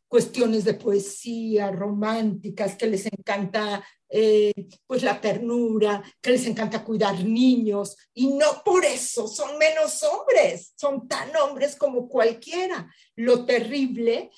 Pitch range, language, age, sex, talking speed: 210-265 Hz, Spanish, 50-69, female, 125 wpm